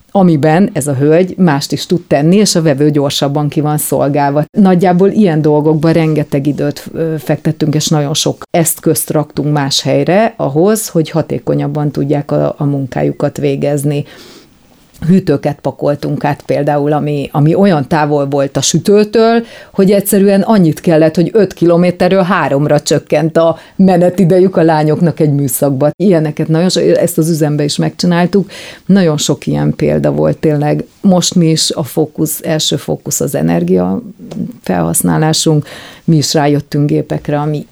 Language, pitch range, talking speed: Hungarian, 145-170 Hz, 145 wpm